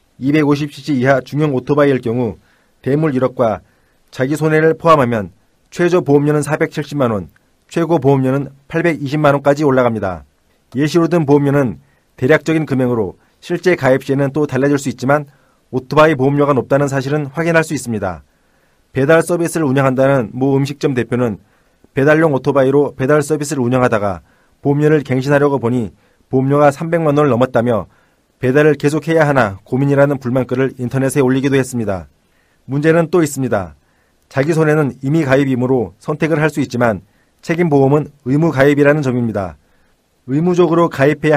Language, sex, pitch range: Korean, male, 125-150 Hz